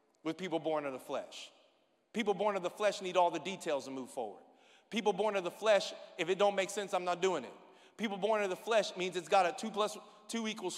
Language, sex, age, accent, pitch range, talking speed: English, male, 40-59, American, 205-310 Hz, 250 wpm